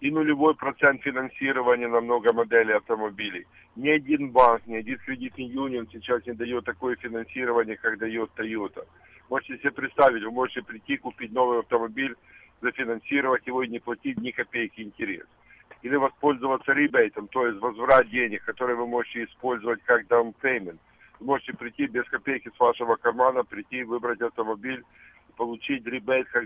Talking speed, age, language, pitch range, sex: 150 wpm, 50-69, Russian, 120-135 Hz, male